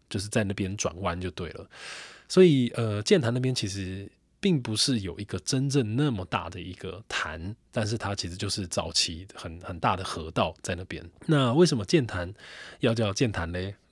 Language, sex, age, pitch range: Chinese, male, 20-39, 95-130 Hz